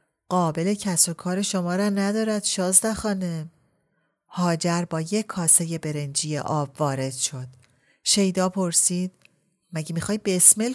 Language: Persian